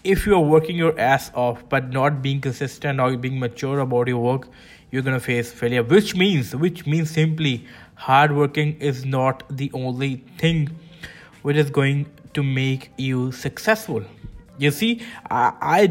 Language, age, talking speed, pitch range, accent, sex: English, 20-39, 170 wpm, 125-150 Hz, Indian, male